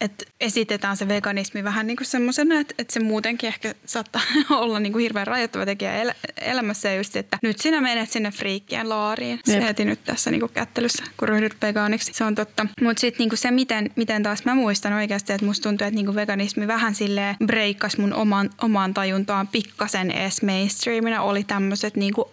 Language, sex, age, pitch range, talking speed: Finnish, female, 10-29, 205-235 Hz, 185 wpm